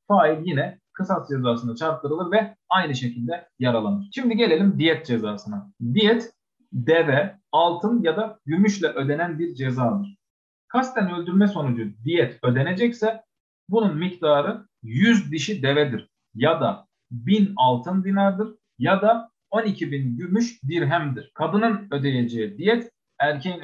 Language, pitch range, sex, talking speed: Turkish, 135-205 Hz, male, 115 wpm